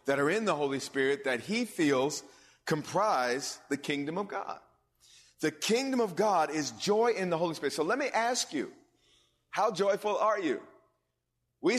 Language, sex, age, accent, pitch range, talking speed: English, male, 30-49, American, 145-220 Hz, 175 wpm